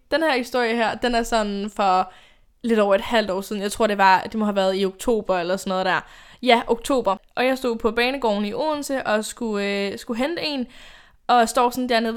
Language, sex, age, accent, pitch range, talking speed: Danish, female, 10-29, native, 215-290 Hz, 235 wpm